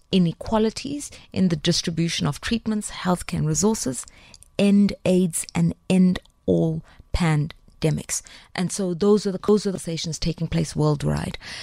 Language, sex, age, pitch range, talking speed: English, female, 30-49, 165-200 Hz, 120 wpm